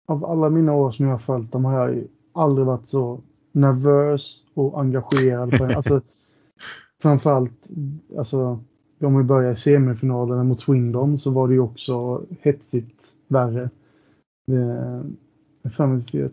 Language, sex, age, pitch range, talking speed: Swedish, male, 20-39, 125-140 Hz, 130 wpm